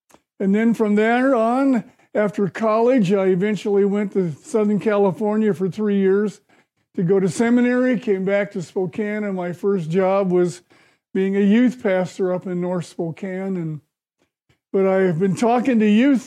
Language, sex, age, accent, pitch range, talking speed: English, male, 50-69, American, 185-220 Hz, 165 wpm